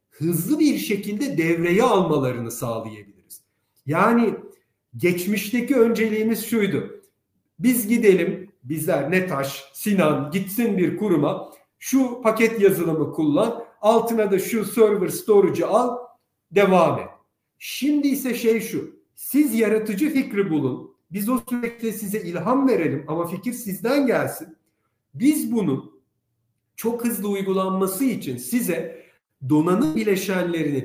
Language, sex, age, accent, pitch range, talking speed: Turkish, male, 50-69, native, 170-245 Hz, 110 wpm